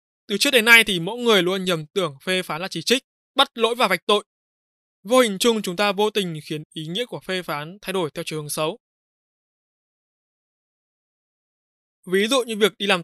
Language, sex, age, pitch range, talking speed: Vietnamese, male, 20-39, 170-220 Hz, 205 wpm